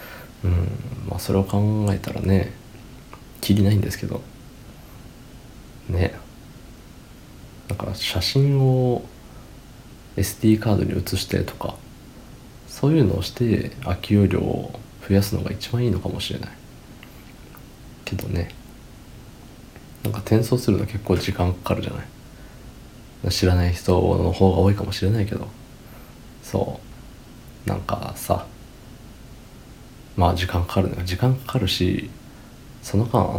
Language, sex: Japanese, male